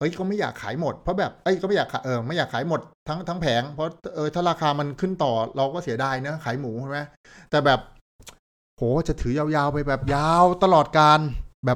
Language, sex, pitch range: Thai, male, 115-150 Hz